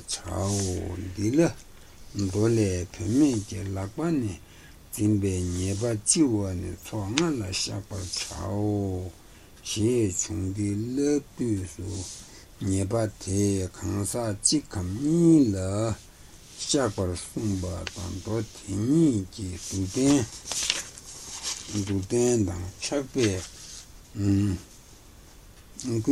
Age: 60-79